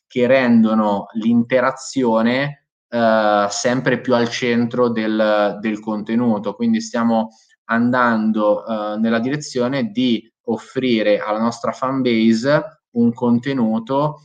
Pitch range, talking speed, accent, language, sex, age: 110-130 Hz, 105 wpm, native, Italian, male, 20-39